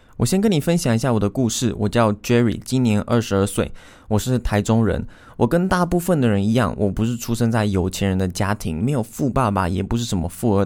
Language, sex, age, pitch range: Chinese, male, 20-39, 100-130 Hz